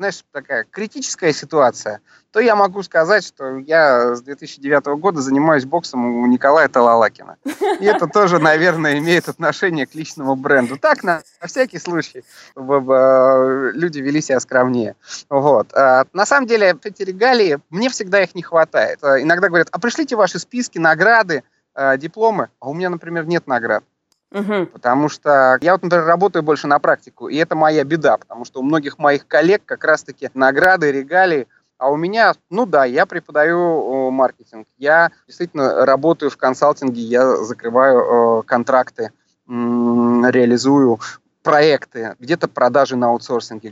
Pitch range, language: 125-170 Hz, Russian